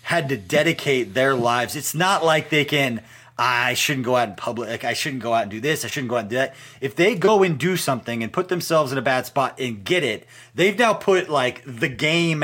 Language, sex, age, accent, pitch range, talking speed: English, male, 30-49, American, 115-140 Hz, 250 wpm